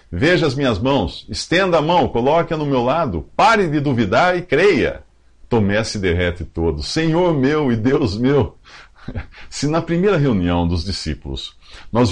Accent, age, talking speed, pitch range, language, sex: Brazilian, 50-69, 160 wpm, 85-140 Hz, English, male